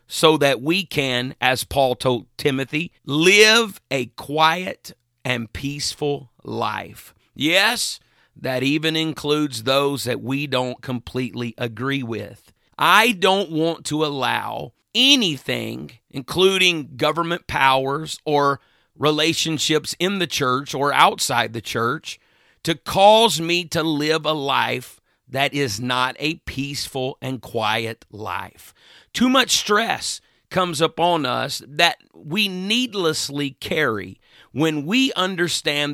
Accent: American